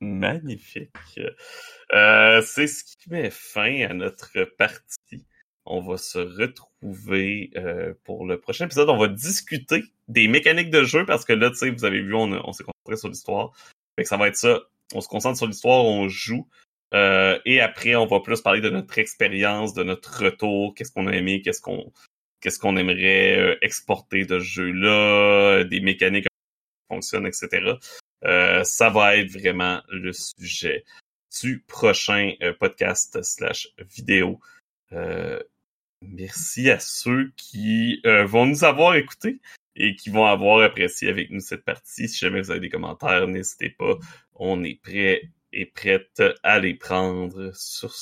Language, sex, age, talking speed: French, male, 30-49, 165 wpm